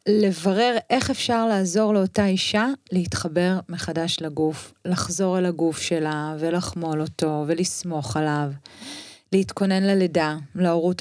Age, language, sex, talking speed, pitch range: 30-49, Hebrew, female, 110 wpm, 165-205 Hz